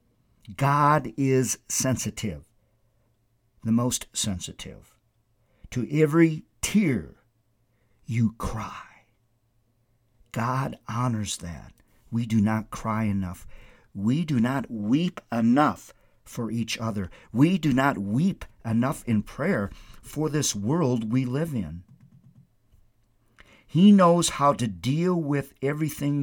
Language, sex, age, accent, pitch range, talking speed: English, male, 50-69, American, 110-140 Hz, 110 wpm